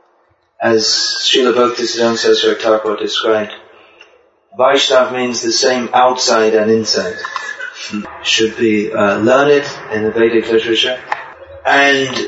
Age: 30-49